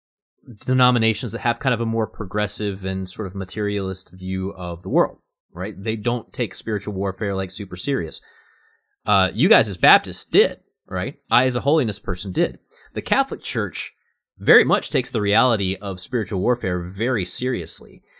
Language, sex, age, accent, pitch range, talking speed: English, male, 30-49, American, 95-130 Hz, 170 wpm